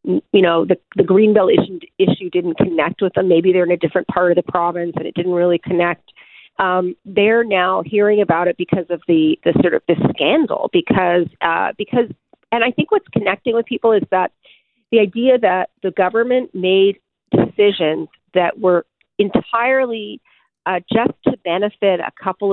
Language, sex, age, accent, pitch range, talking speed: English, female, 40-59, American, 185-235 Hz, 180 wpm